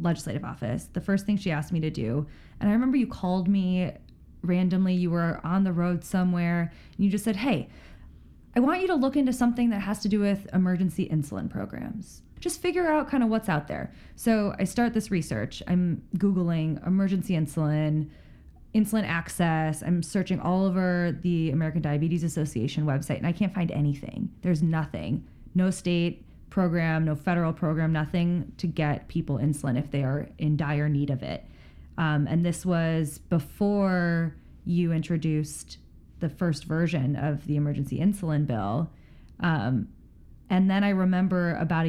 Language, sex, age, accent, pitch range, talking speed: English, female, 20-39, American, 150-185 Hz, 170 wpm